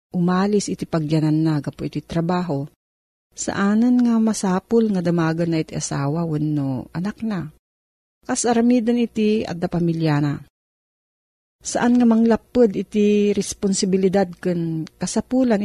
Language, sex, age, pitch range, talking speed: Filipino, female, 40-59, 165-220 Hz, 105 wpm